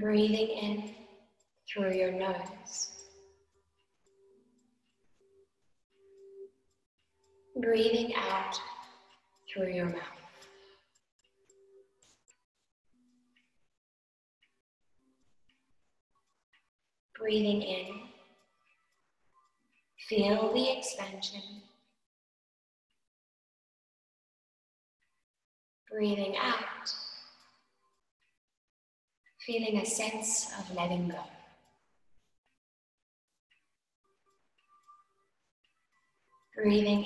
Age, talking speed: 30-49, 40 wpm